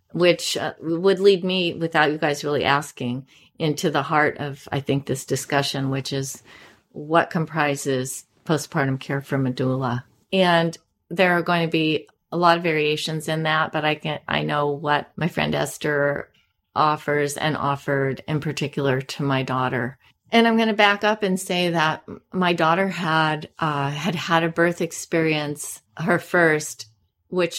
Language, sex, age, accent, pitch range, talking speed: English, female, 40-59, American, 145-175 Hz, 165 wpm